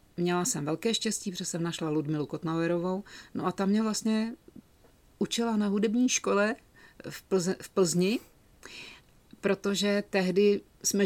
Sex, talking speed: female, 130 wpm